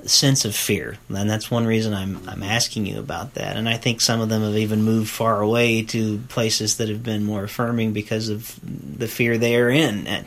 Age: 40-59